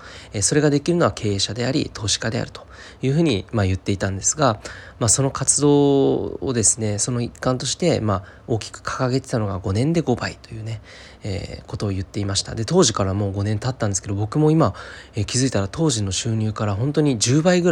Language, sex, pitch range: Japanese, male, 95-120 Hz